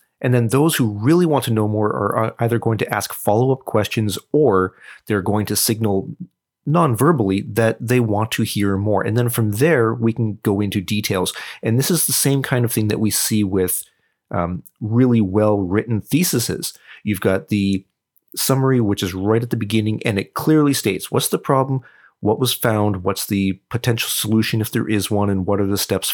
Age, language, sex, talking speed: 30-49, English, male, 195 wpm